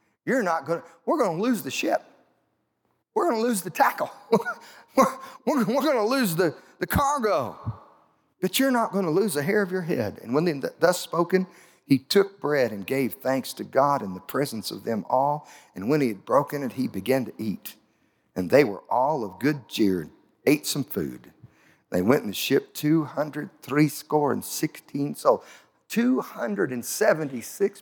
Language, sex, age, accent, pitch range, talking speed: English, male, 50-69, American, 130-185 Hz, 185 wpm